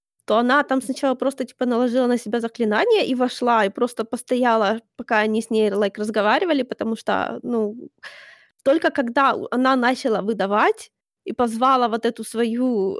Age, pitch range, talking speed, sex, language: 20-39, 225-265 Hz, 160 wpm, female, Ukrainian